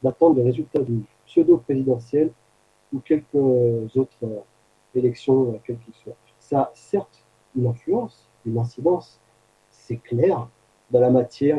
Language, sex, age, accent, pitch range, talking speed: French, male, 40-59, French, 115-145 Hz, 130 wpm